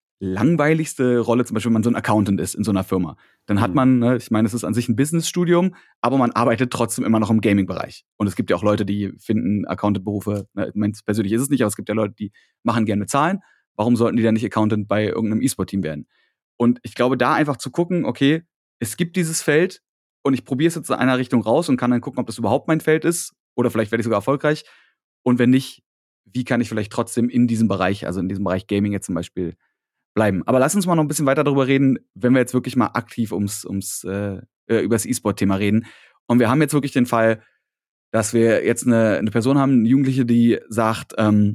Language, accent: German, German